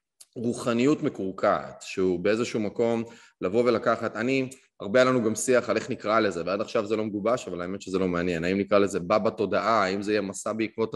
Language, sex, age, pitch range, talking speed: Hebrew, male, 20-39, 90-115 Hz, 195 wpm